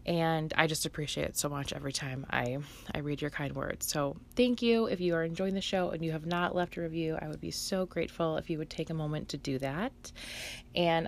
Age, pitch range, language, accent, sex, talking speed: 20-39, 155-200 Hz, English, American, female, 250 wpm